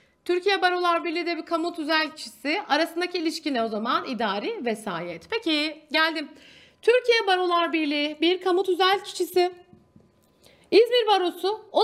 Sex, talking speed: female, 135 wpm